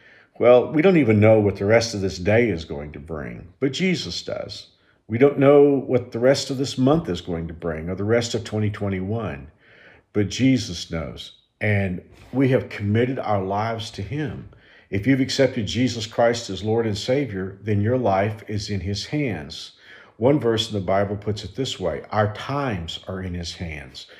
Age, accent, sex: 50-69, American, male